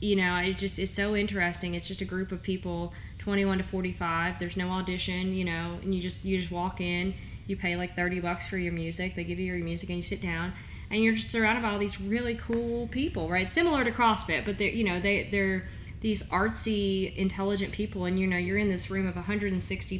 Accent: American